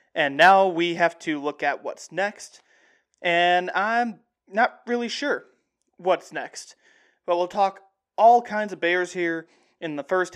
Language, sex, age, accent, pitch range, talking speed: English, male, 20-39, American, 160-195 Hz, 155 wpm